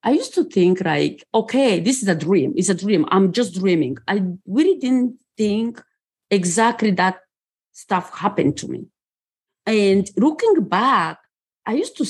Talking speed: 160 wpm